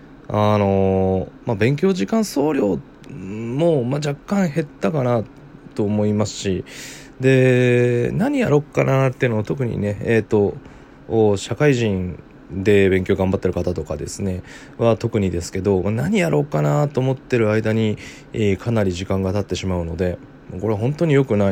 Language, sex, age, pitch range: Japanese, male, 20-39, 95-135 Hz